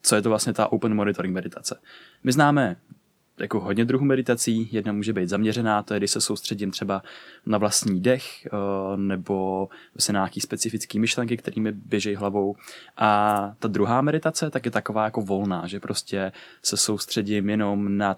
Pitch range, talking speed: 100-115 Hz, 170 wpm